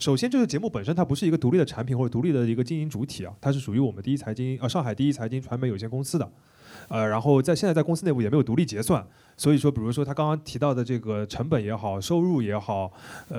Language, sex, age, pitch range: Chinese, male, 20-39, 110-145 Hz